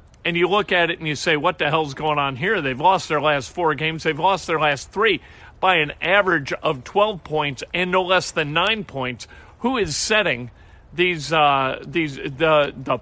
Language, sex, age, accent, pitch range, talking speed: English, male, 50-69, American, 140-185 Hz, 210 wpm